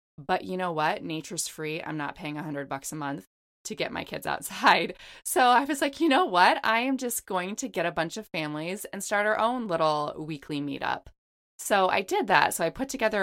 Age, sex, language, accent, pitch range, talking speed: 20-39, female, English, American, 150-185 Hz, 225 wpm